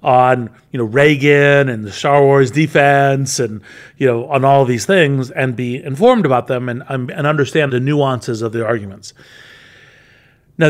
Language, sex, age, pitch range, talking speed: English, male, 40-59, 120-145 Hz, 175 wpm